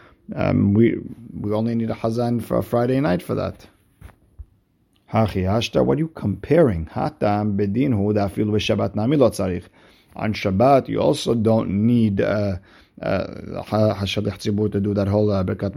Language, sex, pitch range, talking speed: English, male, 100-115 Hz, 155 wpm